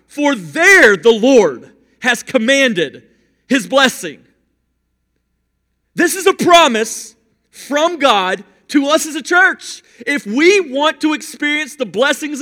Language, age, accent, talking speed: English, 40-59, American, 125 wpm